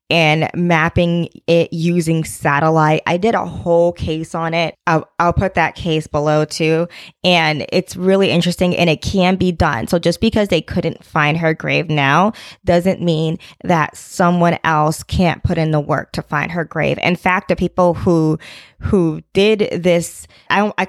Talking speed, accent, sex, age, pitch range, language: 175 wpm, American, female, 20-39, 155-180 Hz, English